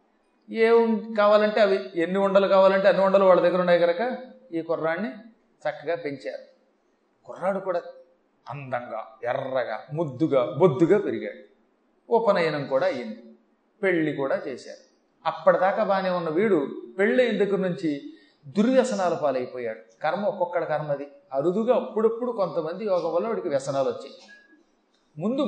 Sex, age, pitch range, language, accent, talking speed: male, 30-49, 160-220 Hz, Telugu, native, 120 wpm